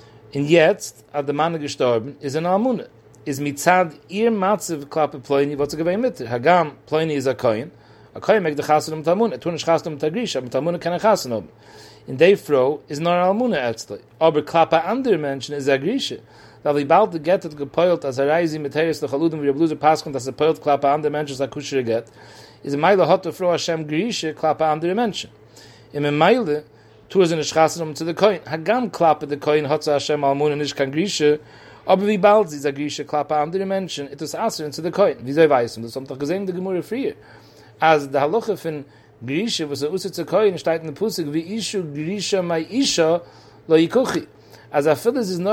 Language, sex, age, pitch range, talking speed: English, male, 40-59, 145-180 Hz, 145 wpm